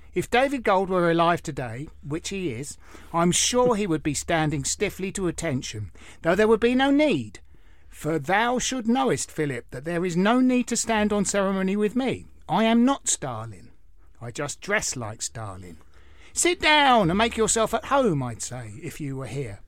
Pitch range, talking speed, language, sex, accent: 120-190 Hz, 190 wpm, English, male, British